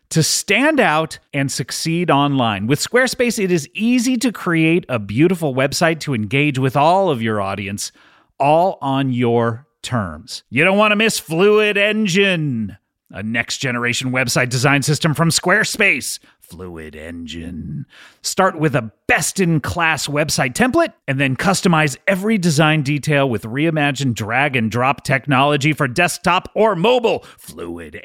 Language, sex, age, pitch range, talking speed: English, male, 30-49, 140-220 Hz, 150 wpm